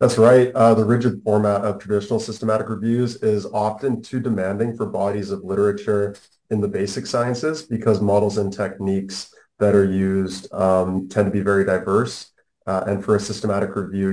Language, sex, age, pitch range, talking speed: English, male, 30-49, 95-110 Hz, 175 wpm